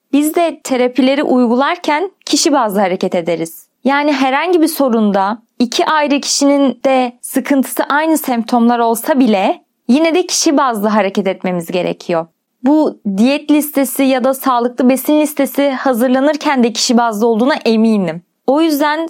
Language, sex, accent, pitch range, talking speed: Turkish, female, native, 230-285 Hz, 140 wpm